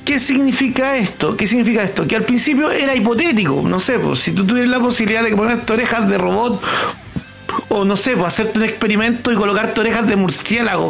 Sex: male